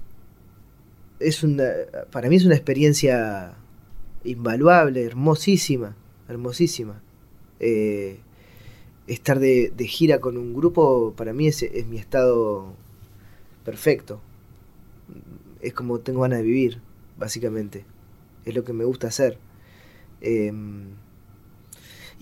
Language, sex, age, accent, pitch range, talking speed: Spanish, male, 20-39, Argentinian, 105-130 Hz, 105 wpm